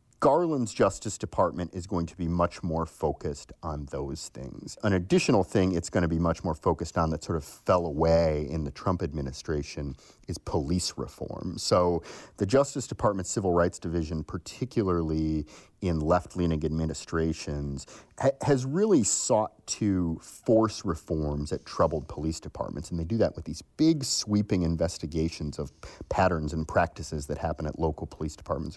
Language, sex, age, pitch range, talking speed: English, male, 40-59, 80-105 Hz, 160 wpm